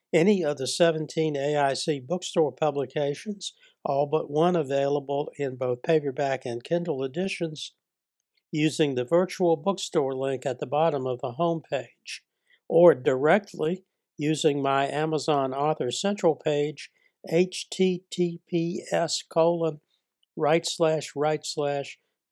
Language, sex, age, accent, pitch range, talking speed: English, male, 60-79, American, 135-170 Hz, 115 wpm